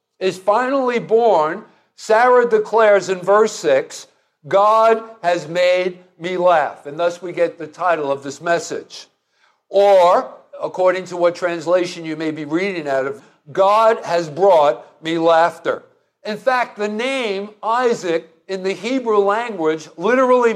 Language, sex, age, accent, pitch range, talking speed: English, male, 60-79, American, 170-215 Hz, 140 wpm